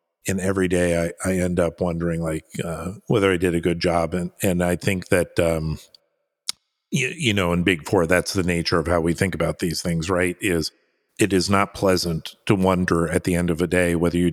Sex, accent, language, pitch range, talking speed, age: male, American, English, 85-95 Hz, 225 wpm, 50-69